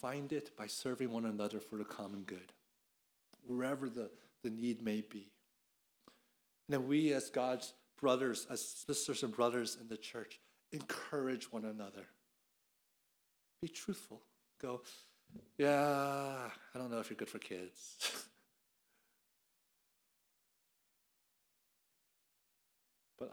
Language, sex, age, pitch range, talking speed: English, male, 50-69, 95-130 Hz, 115 wpm